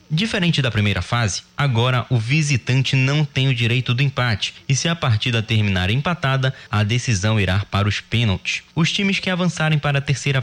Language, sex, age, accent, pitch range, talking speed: Portuguese, male, 20-39, Brazilian, 115-150 Hz, 185 wpm